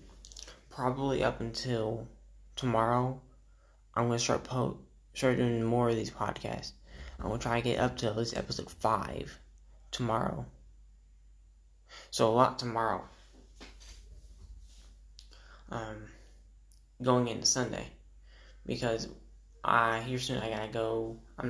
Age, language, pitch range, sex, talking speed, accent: 10-29, English, 75-120 Hz, male, 125 wpm, American